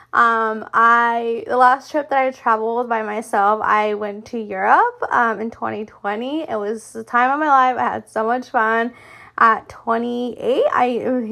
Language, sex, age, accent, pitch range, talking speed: English, female, 20-39, American, 220-255 Hz, 165 wpm